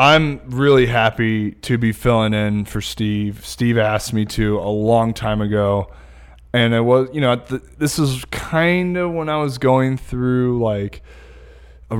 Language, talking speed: English, 165 wpm